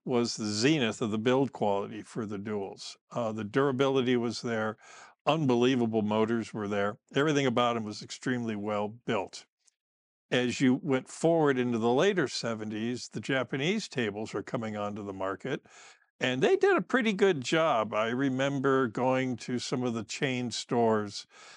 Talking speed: 160 wpm